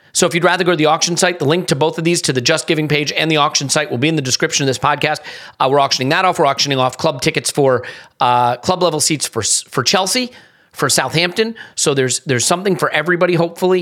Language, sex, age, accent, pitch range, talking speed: English, male, 40-59, American, 135-160 Hz, 245 wpm